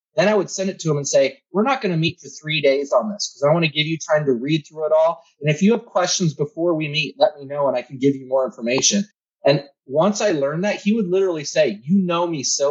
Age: 30-49